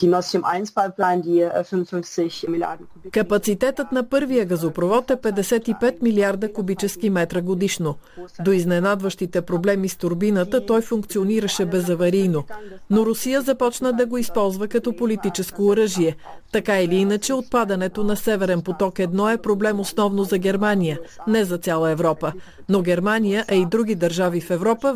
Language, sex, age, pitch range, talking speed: Bulgarian, female, 40-59, 180-220 Hz, 125 wpm